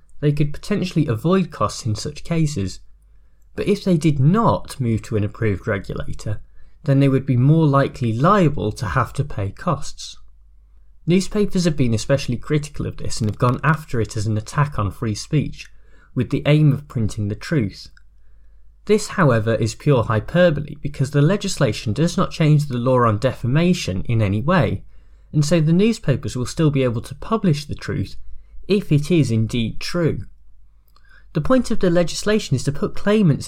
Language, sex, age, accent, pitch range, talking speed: English, male, 20-39, British, 110-160 Hz, 175 wpm